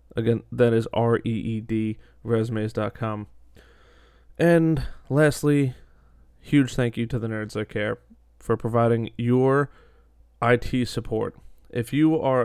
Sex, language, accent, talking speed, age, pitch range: male, English, American, 110 wpm, 20-39, 110-125 Hz